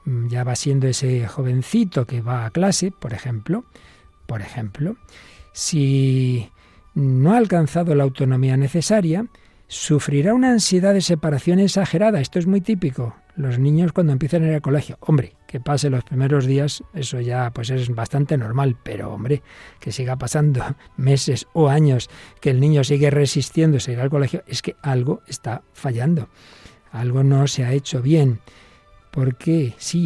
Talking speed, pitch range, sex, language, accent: 160 wpm, 130-165 Hz, male, Spanish, Spanish